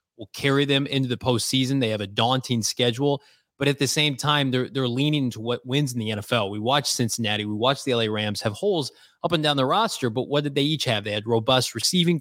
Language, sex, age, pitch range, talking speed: English, male, 20-39, 115-140 Hz, 245 wpm